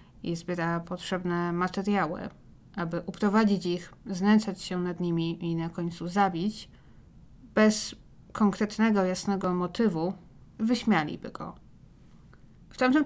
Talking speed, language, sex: 105 wpm, Polish, female